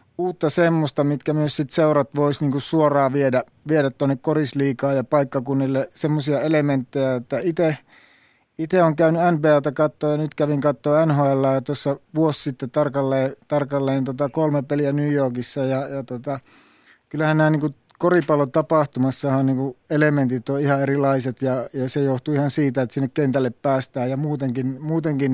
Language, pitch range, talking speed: Finnish, 135-150 Hz, 155 wpm